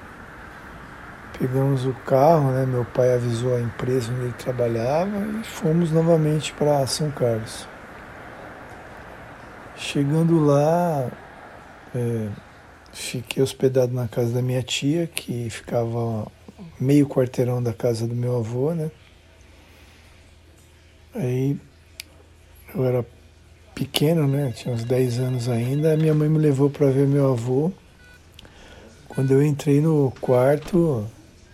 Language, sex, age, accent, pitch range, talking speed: Portuguese, male, 60-79, Brazilian, 115-145 Hz, 115 wpm